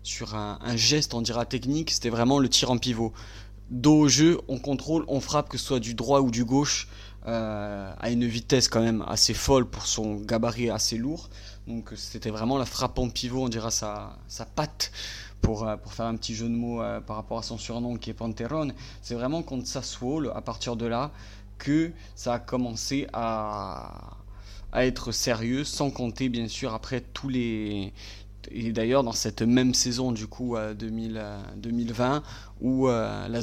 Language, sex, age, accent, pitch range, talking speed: French, male, 20-39, French, 110-130 Hz, 190 wpm